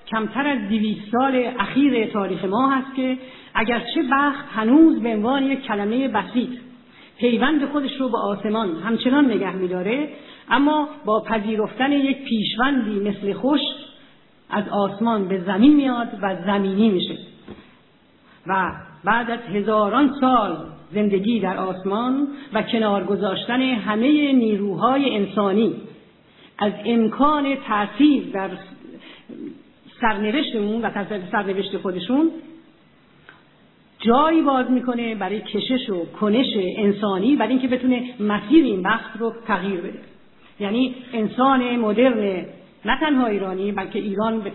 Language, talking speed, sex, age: Persian, 120 wpm, female, 50-69